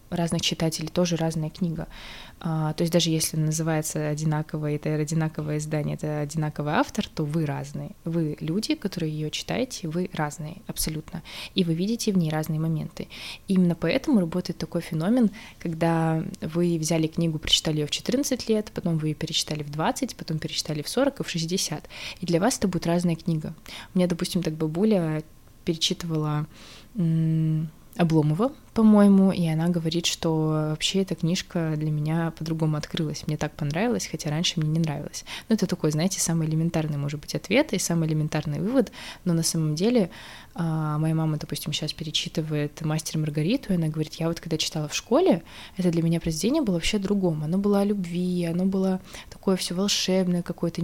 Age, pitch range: 20-39, 155-185 Hz